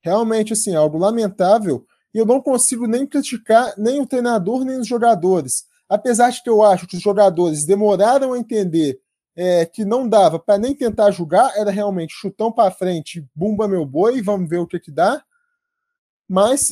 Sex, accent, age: male, Brazilian, 20-39